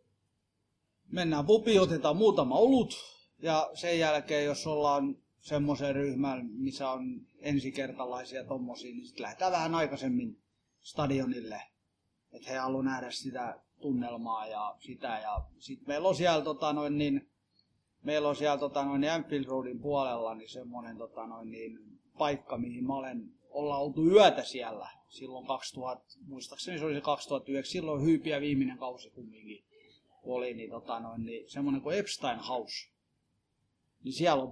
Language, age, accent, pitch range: Finnish, 30-49, native, 130-155 Hz